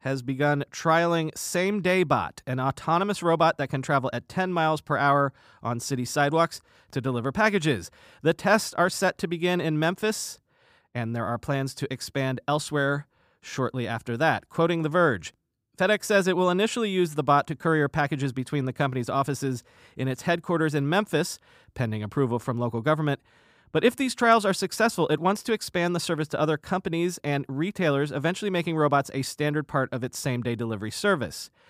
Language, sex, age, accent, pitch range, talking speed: English, male, 30-49, American, 135-175 Hz, 185 wpm